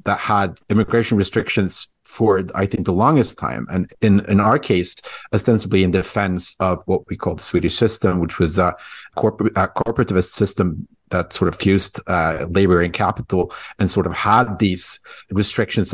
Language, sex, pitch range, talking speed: English, male, 95-115 Hz, 175 wpm